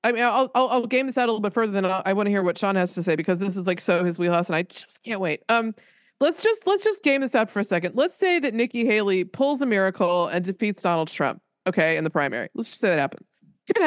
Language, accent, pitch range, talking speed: English, American, 190-265 Hz, 300 wpm